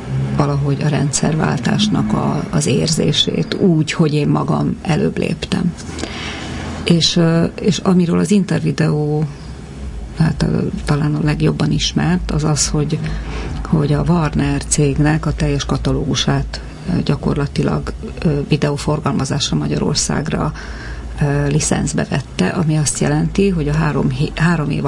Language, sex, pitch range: Hungarian, female, 145-170 Hz